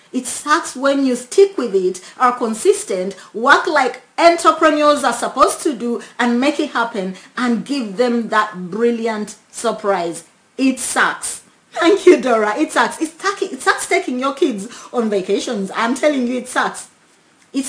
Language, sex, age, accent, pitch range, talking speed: English, female, 30-49, Nigerian, 210-280 Hz, 155 wpm